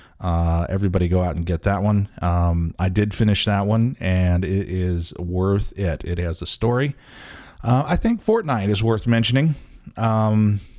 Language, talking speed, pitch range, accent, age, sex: English, 170 wpm, 100-120 Hz, American, 30-49, male